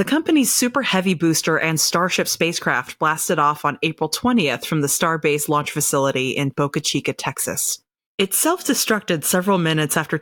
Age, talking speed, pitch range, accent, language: 30-49, 155 wpm, 145-195 Hz, American, English